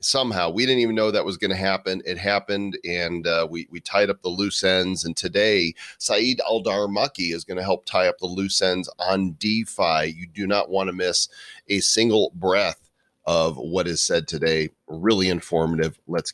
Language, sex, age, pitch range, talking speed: English, male, 40-59, 85-110 Hz, 200 wpm